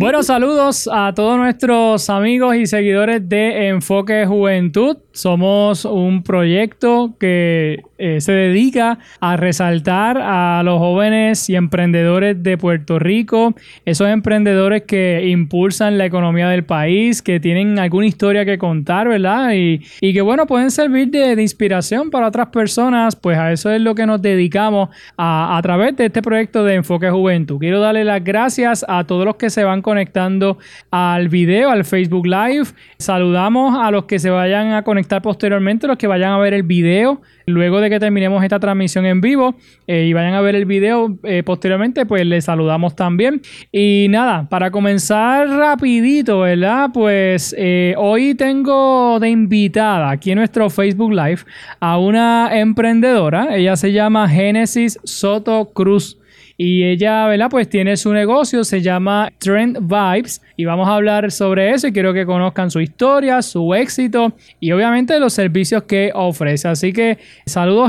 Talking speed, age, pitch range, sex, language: 165 wpm, 20-39, 185-225 Hz, male, Spanish